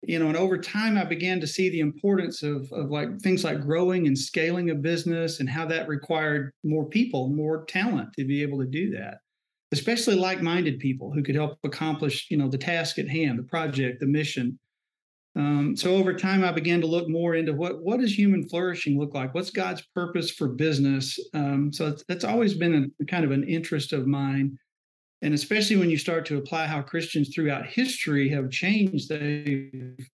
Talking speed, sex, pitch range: 200 wpm, male, 145-175 Hz